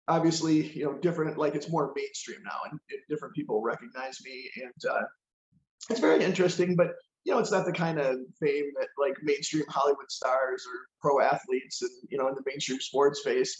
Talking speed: 195 wpm